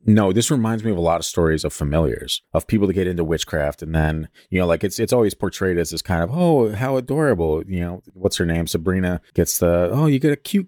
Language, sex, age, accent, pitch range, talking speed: English, male, 30-49, American, 75-95 Hz, 260 wpm